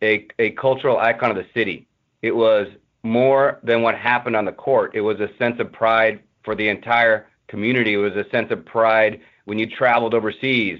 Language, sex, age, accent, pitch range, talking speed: English, male, 40-59, American, 115-135 Hz, 200 wpm